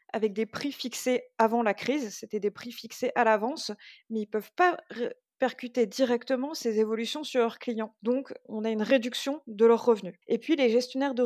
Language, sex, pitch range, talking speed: French, female, 220-255 Hz, 205 wpm